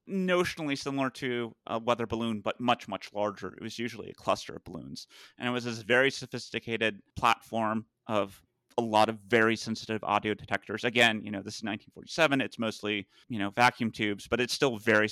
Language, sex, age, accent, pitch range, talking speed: English, male, 30-49, American, 105-125 Hz, 190 wpm